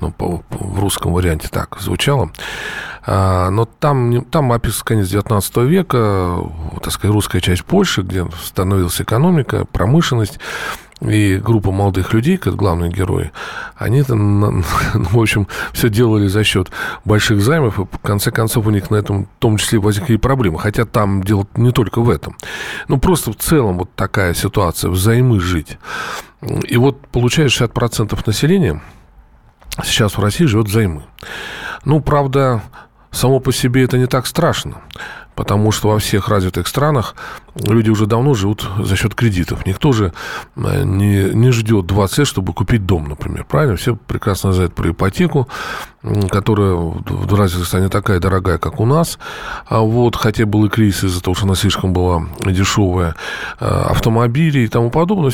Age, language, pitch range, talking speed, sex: 40-59, Russian, 95-120 Hz, 155 wpm, male